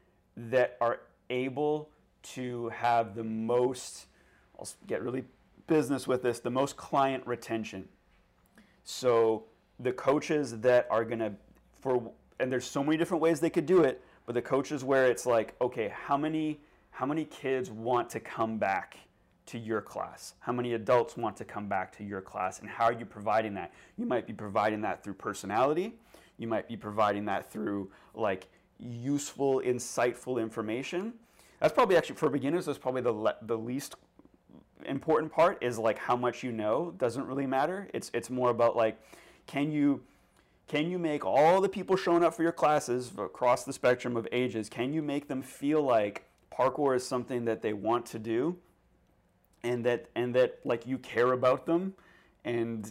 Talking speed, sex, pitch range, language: 175 wpm, male, 115-145 Hz, English